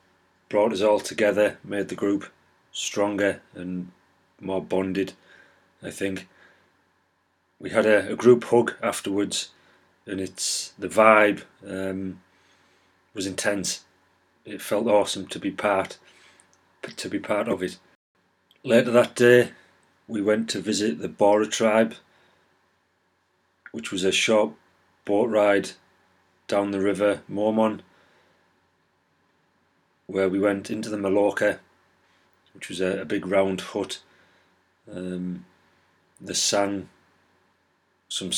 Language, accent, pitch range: English, British, 95-105 Hz